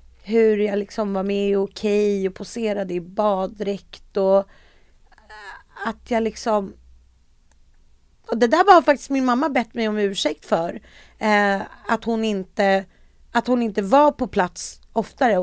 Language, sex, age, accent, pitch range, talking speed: English, female, 30-49, Swedish, 190-245 Hz, 150 wpm